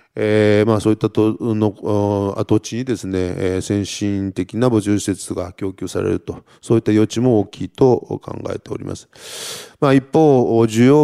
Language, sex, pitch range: Japanese, male, 100-125 Hz